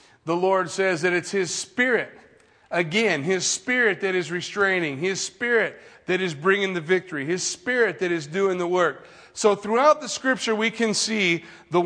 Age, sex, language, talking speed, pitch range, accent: 40-59, male, English, 175 wpm, 170-205 Hz, American